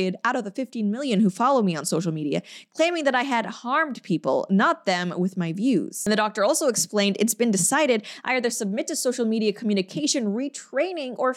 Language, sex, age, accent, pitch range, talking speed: English, female, 20-39, American, 195-260 Hz, 205 wpm